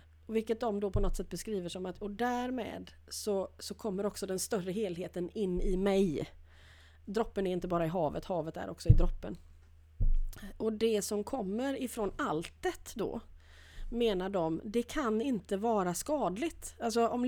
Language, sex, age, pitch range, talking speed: Swedish, female, 30-49, 170-225 Hz, 165 wpm